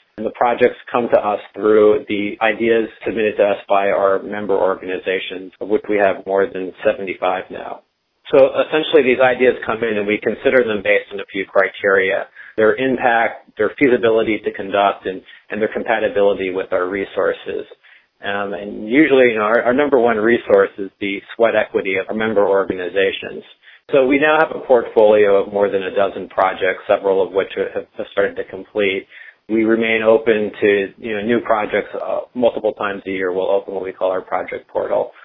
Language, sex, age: English, male, 40-59